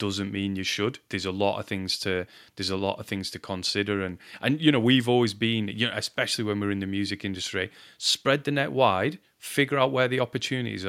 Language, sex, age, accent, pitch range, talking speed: English, male, 30-49, British, 100-115 Hz, 230 wpm